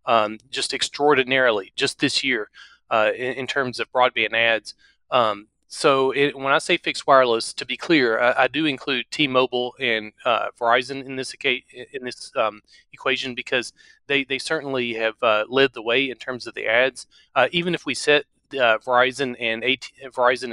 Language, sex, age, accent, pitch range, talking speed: English, male, 30-49, American, 115-135 Hz, 185 wpm